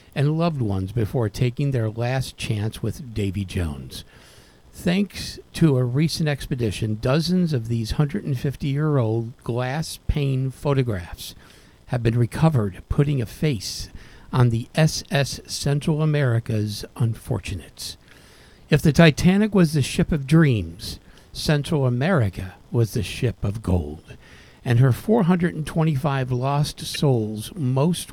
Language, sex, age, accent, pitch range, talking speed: English, male, 50-69, American, 115-150 Hz, 120 wpm